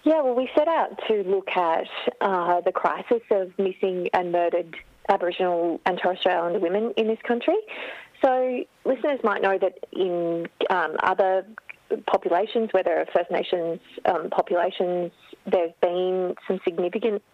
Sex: female